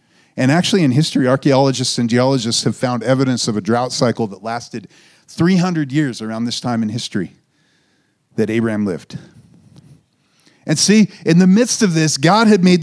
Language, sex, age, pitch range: English, male, 40-59, 120-150 Hz